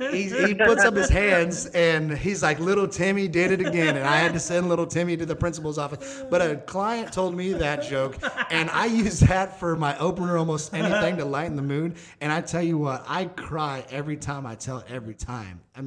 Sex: male